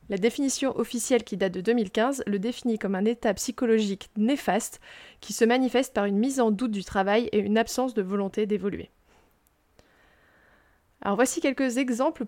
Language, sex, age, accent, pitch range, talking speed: French, female, 20-39, French, 205-245 Hz, 165 wpm